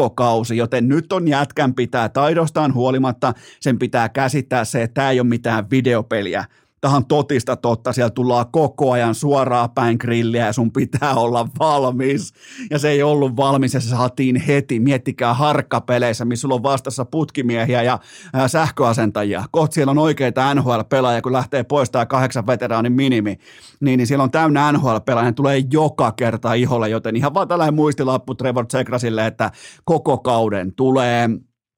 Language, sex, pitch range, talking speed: Finnish, male, 120-140 Hz, 160 wpm